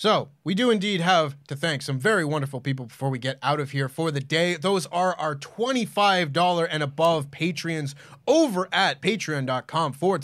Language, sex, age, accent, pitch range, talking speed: English, male, 20-39, American, 140-185 Hz, 180 wpm